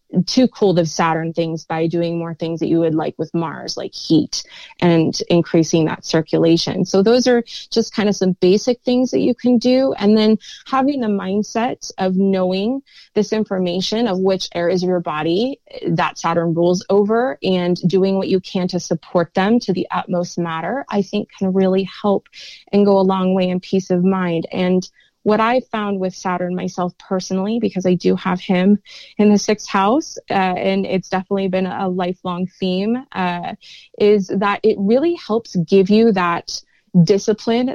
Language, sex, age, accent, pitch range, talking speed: English, female, 20-39, American, 180-215 Hz, 180 wpm